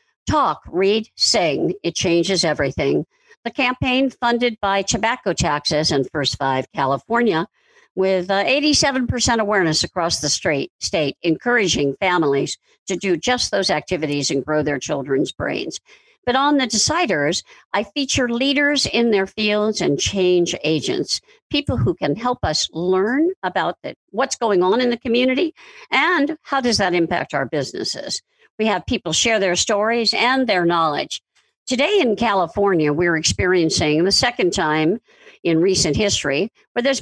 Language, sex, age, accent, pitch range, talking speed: English, female, 50-69, American, 155-245 Hz, 145 wpm